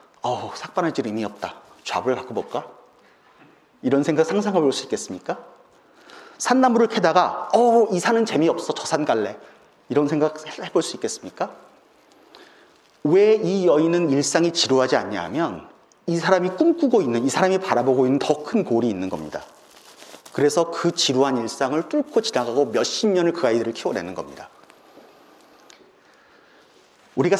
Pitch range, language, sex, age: 130-210 Hz, Korean, male, 40-59